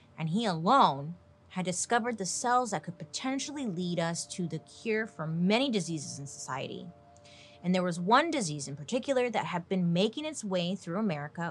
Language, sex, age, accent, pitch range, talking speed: English, female, 30-49, American, 160-230 Hz, 180 wpm